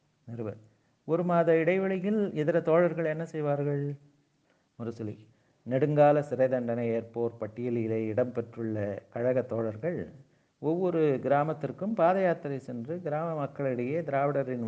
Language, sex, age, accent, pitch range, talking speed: Tamil, male, 50-69, native, 120-155 Hz, 95 wpm